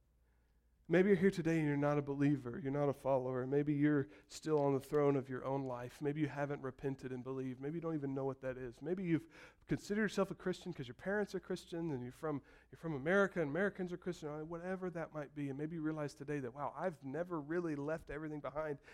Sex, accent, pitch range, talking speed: male, American, 135-185 Hz, 235 wpm